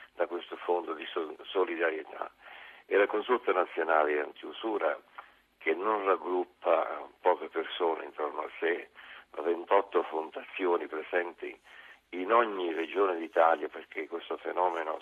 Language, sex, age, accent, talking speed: Italian, male, 50-69, native, 115 wpm